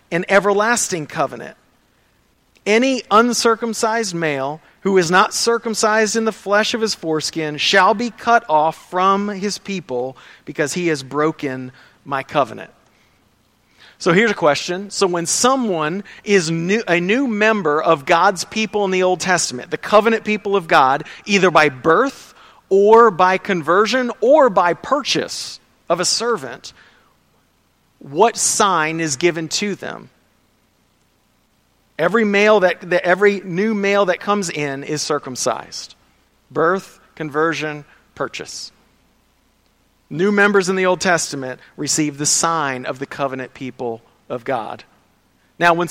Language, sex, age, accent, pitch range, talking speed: English, male, 40-59, American, 155-210 Hz, 135 wpm